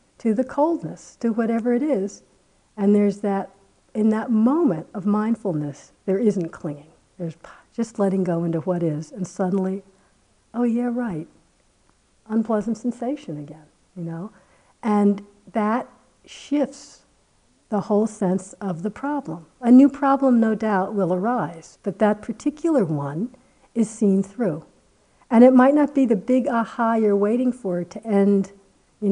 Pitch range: 185-245 Hz